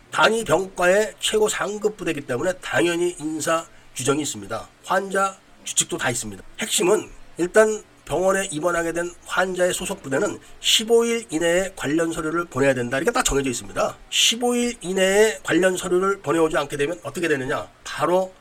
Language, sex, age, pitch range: Korean, male, 40-59, 150-200 Hz